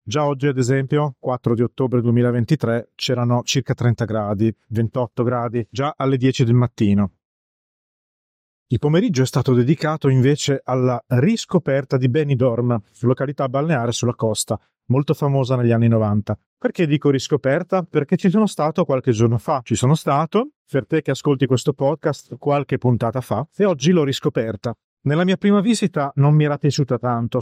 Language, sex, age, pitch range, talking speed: Italian, male, 40-59, 125-150 Hz, 160 wpm